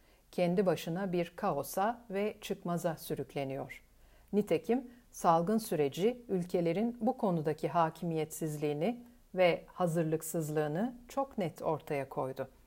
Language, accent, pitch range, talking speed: Turkish, native, 160-220 Hz, 95 wpm